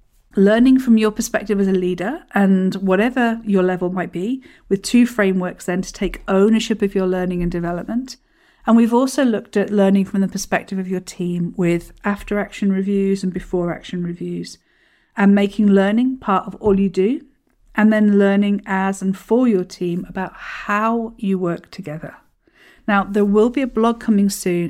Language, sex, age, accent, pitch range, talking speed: English, female, 50-69, British, 180-210 Hz, 180 wpm